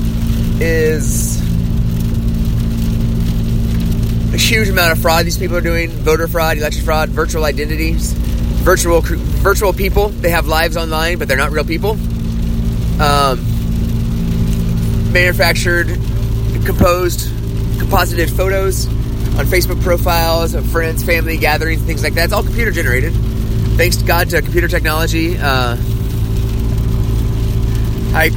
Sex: male